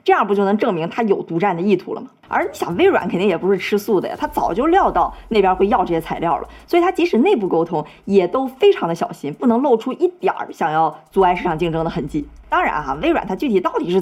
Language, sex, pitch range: Chinese, female, 165-230 Hz